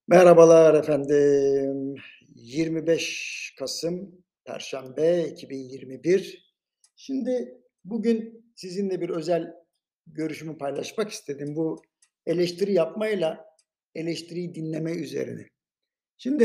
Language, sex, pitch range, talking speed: Turkish, male, 165-200 Hz, 75 wpm